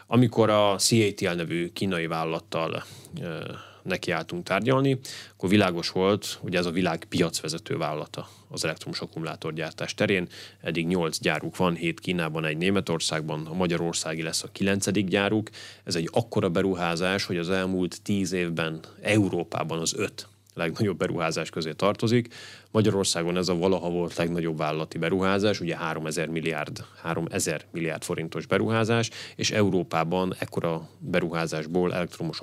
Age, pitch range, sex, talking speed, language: 30-49, 85-105 Hz, male, 135 wpm, Hungarian